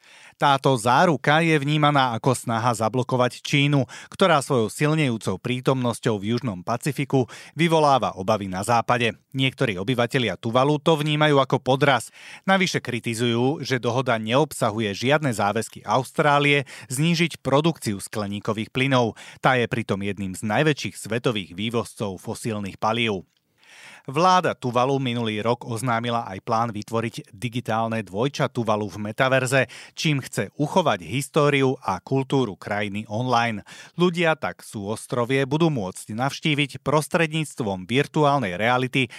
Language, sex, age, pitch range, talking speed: Slovak, male, 30-49, 110-145 Hz, 120 wpm